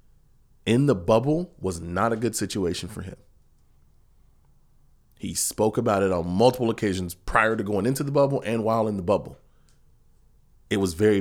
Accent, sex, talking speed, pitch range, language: American, male, 165 wpm, 90-115 Hz, English